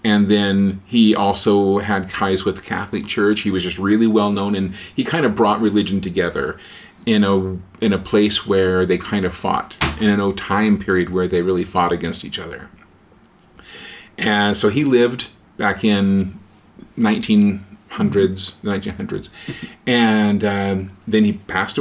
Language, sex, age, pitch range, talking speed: English, male, 40-59, 95-105 Hz, 160 wpm